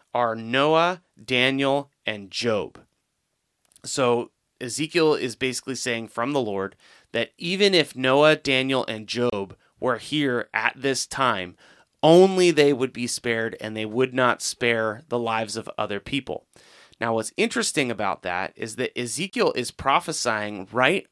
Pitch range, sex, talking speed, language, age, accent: 110-130 Hz, male, 145 wpm, English, 30-49, American